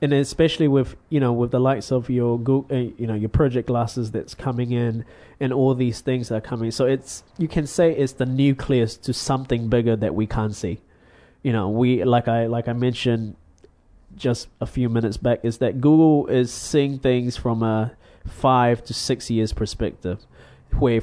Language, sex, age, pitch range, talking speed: English, male, 20-39, 115-130 Hz, 195 wpm